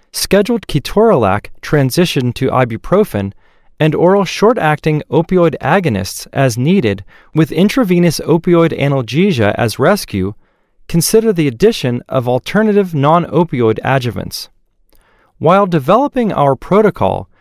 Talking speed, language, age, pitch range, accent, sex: 100 wpm, English, 30-49, 125-195 Hz, American, male